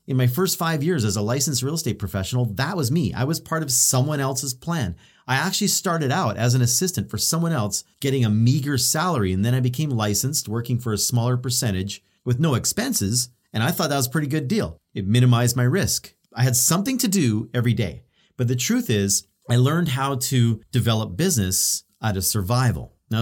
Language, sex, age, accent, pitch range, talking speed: English, male, 40-59, American, 105-155 Hz, 210 wpm